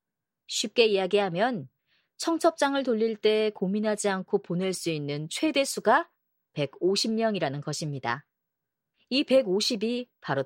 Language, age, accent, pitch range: Korean, 40-59, native, 155-240 Hz